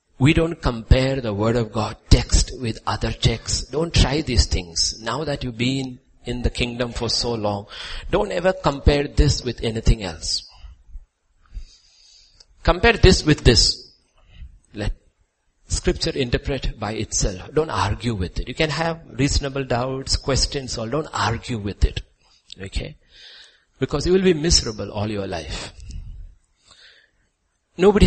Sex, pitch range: male, 95-135 Hz